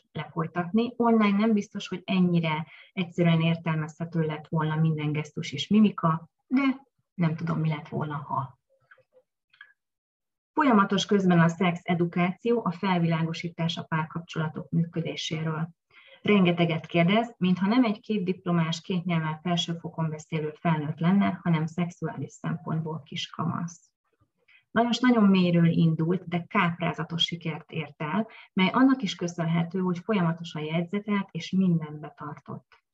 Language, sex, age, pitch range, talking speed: Hungarian, female, 30-49, 160-205 Hz, 120 wpm